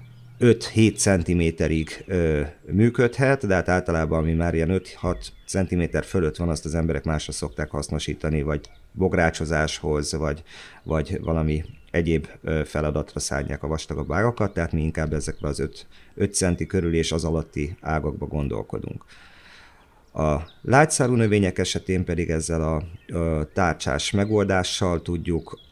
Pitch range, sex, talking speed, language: 80-95 Hz, male, 130 wpm, Hungarian